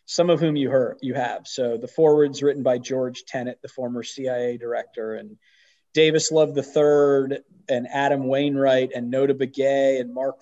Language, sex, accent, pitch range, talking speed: English, male, American, 135-170 Hz, 175 wpm